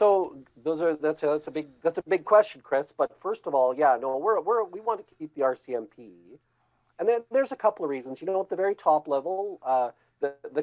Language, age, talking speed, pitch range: English, 40-59, 245 wpm, 120-155 Hz